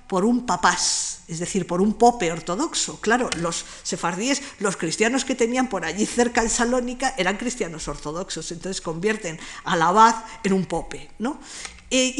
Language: Spanish